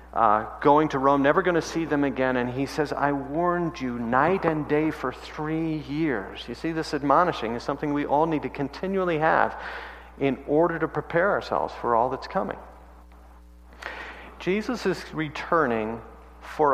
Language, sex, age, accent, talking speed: English, male, 50-69, American, 170 wpm